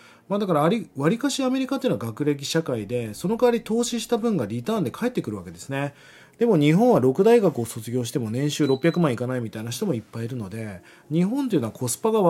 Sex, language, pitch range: male, Japanese, 125-200 Hz